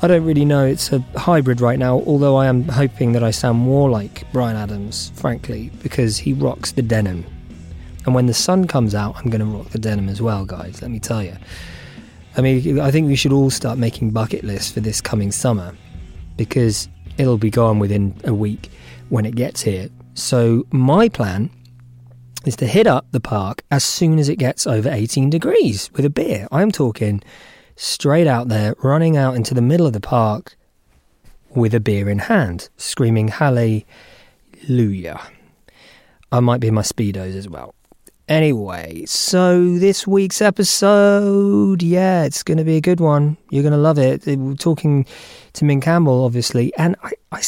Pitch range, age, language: 110-150 Hz, 20-39, English